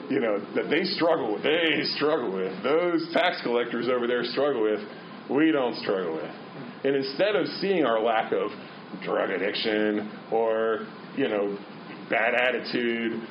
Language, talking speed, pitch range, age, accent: English, 155 wpm, 105-150 Hz, 40-59, American